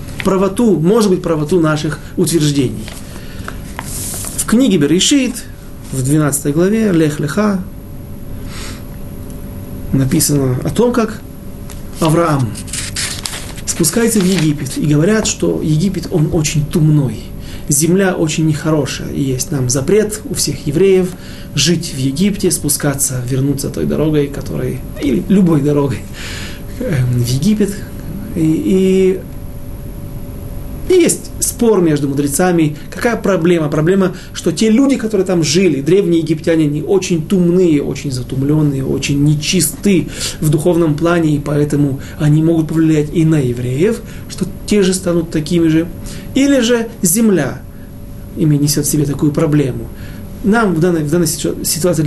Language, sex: Russian, male